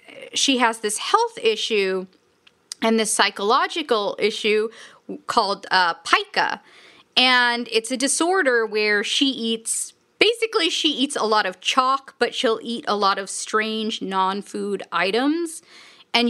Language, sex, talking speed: English, female, 130 wpm